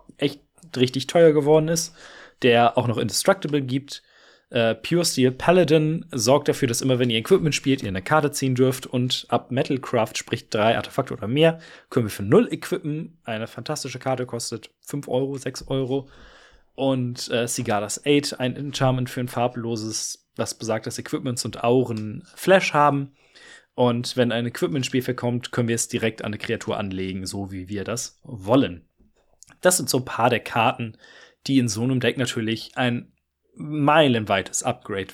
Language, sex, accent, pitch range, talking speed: German, male, German, 115-145 Hz, 170 wpm